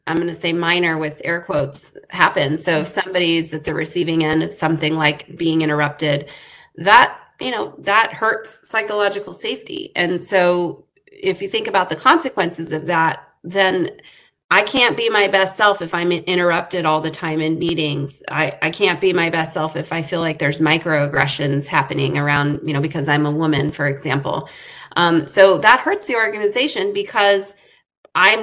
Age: 30-49